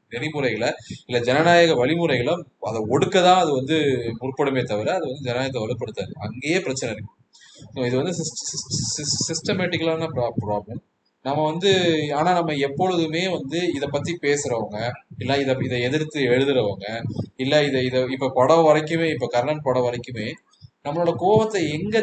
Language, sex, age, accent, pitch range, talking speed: Tamil, male, 20-39, native, 125-165 Hz, 130 wpm